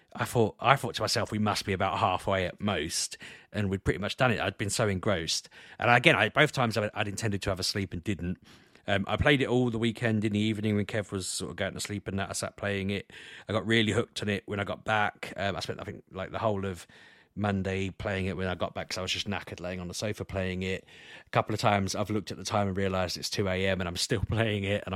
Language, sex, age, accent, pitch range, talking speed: English, male, 30-49, British, 95-115 Hz, 285 wpm